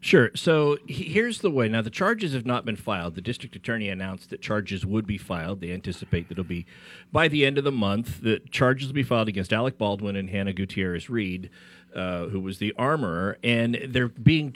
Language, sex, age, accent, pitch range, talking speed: English, male, 50-69, American, 110-150 Hz, 205 wpm